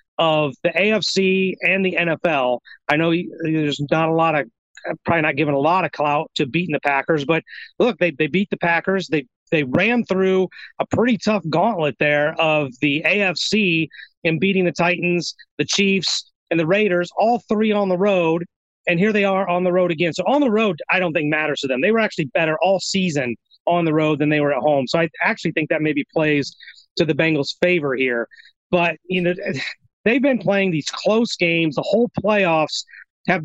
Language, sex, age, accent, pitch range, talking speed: English, male, 30-49, American, 155-195 Hz, 205 wpm